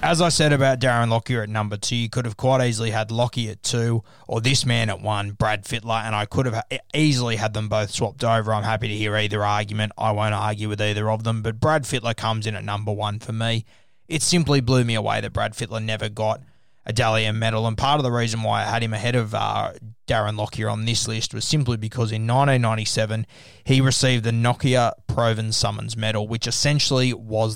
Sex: male